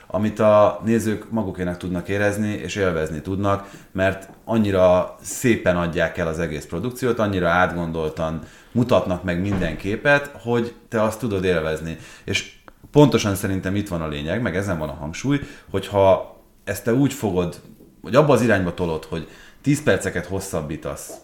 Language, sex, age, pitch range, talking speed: Hungarian, male, 30-49, 80-115 Hz, 155 wpm